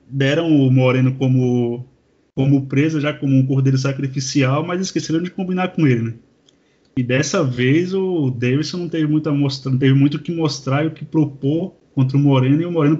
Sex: male